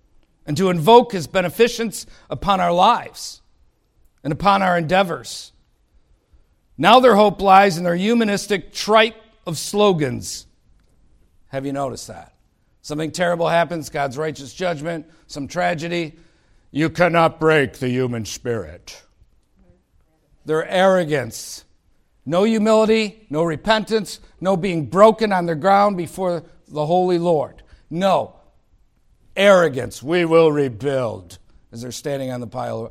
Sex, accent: male, American